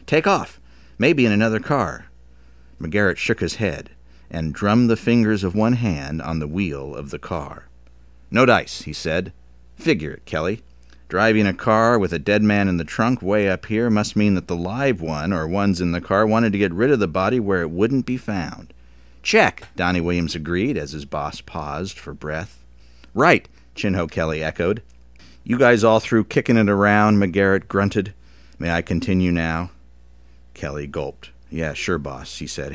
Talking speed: 185 wpm